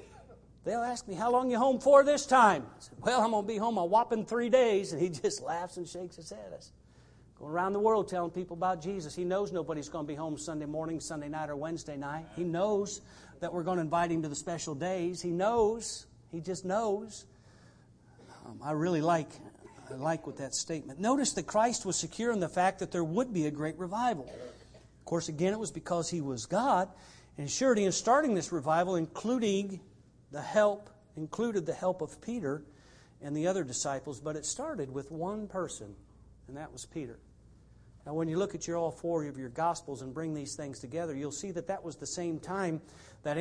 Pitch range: 160-210 Hz